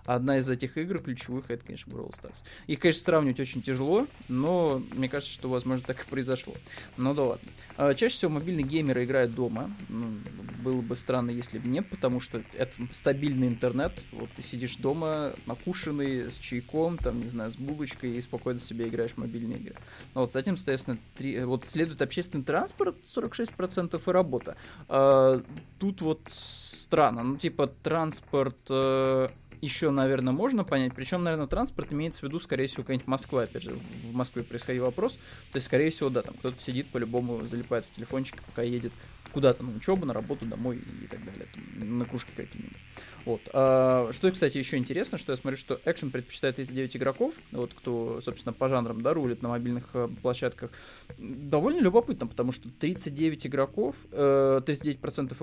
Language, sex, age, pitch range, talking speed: Russian, male, 20-39, 125-150 Hz, 170 wpm